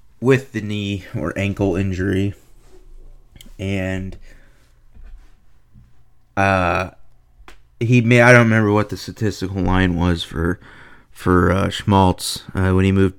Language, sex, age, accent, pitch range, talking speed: English, male, 30-49, American, 95-125 Hz, 120 wpm